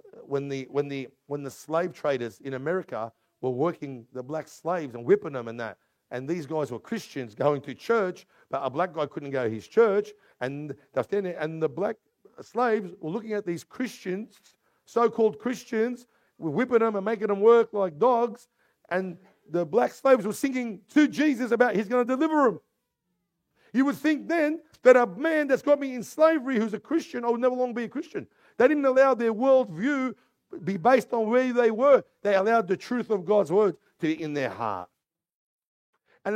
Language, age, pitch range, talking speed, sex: English, 50-69, 155-250 Hz, 195 wpm, male